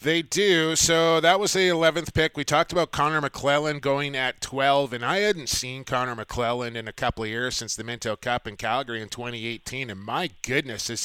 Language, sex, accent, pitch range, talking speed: English, male, American, 120-160 Hz, 215 wpm